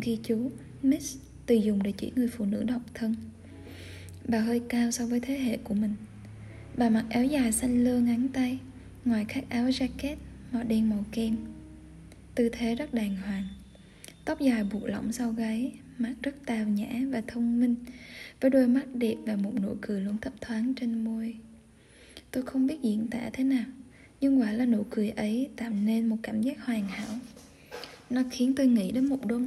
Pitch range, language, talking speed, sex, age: 220-255 Hz, Vietnamese, 195 wpm, female, 10-29